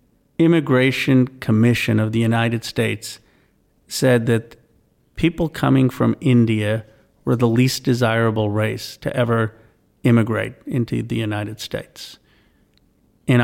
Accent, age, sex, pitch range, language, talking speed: American, 40-59, male, 110-125 Hz, English, 110 wpm